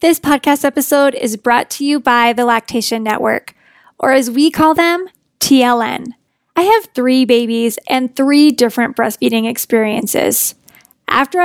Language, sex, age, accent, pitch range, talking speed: English, female, 10-29, American, 250-295 Hz, 140 wpm